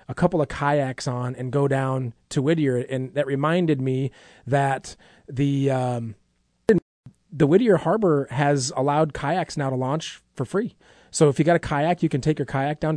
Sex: male